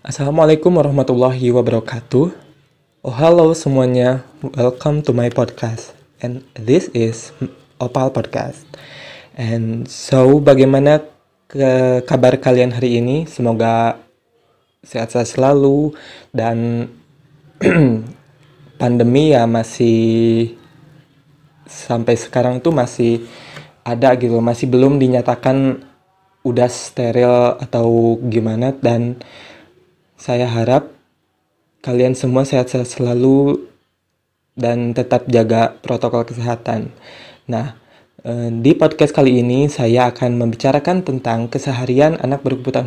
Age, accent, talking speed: 20-39, native, 95 wpm